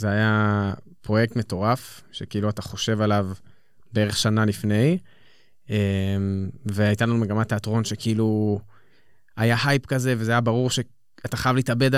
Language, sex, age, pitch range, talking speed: Hebrew, male, 20-39, 105-125 Hz, 125 wpm